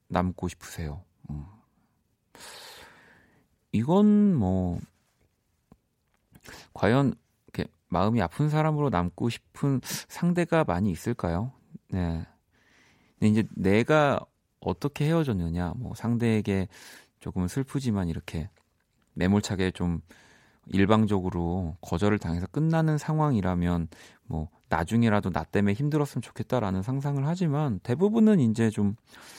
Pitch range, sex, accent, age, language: 90-130 Hz, male, native, 40-59, Korean